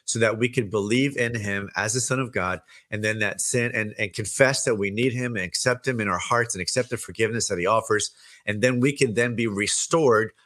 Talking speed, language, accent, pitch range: 245 wpm, English, American, 100-130 Hz